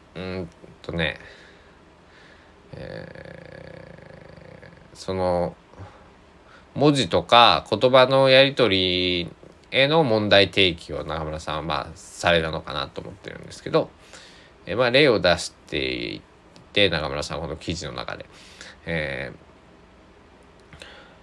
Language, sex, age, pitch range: Japanese, male, 20-39, 85-120 Hz